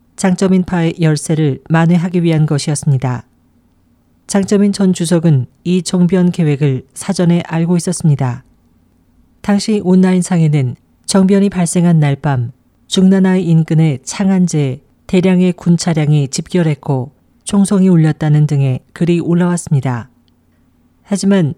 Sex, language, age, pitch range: female, Korean, 40-59, 140-185 Hz